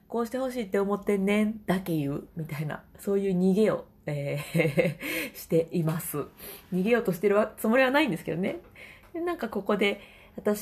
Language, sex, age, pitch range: Japanese, female, 20-39, 170-230 Hz